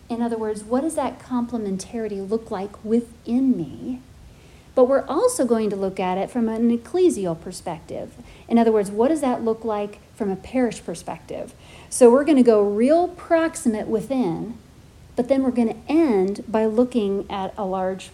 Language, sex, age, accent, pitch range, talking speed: English, female, 40-59, American, 205-270 Hz, 180 wpm